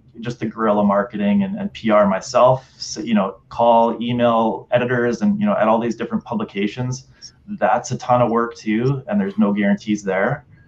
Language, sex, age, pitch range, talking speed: English, male, 20-39, 100-130 Hz, 185 wpm